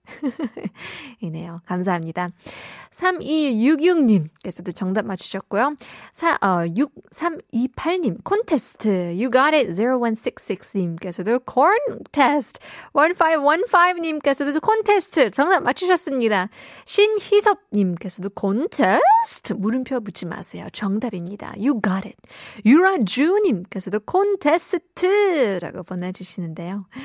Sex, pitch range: female, 200-335 Hz